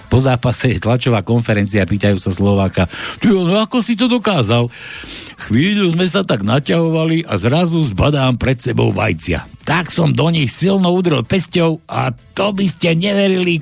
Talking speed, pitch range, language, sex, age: 155 wpm, 105-130 Hz, Slovak, male, 60-79